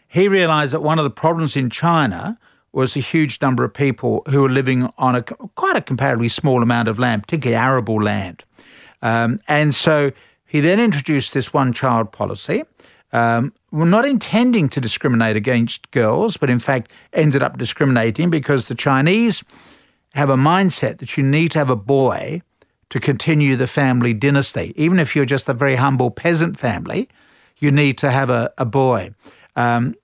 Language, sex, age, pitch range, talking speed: English, male, 50-69, 125-155 Hz, 170 wpm